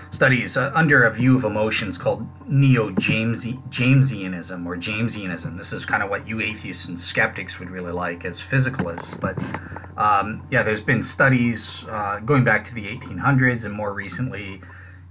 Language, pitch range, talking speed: English, 95-125 Hz, 165 wpm